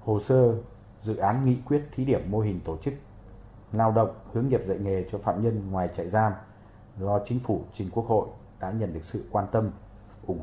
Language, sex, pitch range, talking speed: Vietnamese, male, 95-115 Hz, 215 wpm